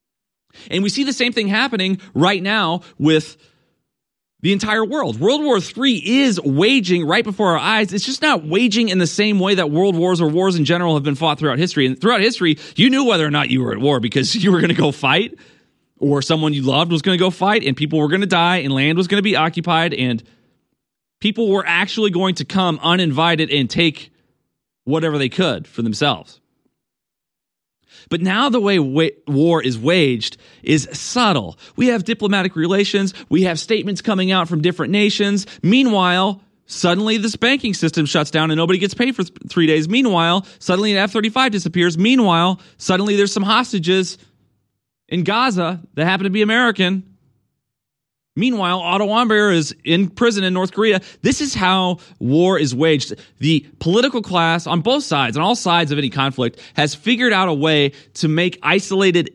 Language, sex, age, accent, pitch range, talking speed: English, male, 30-49, American, 150-205 Hz, 185 wpm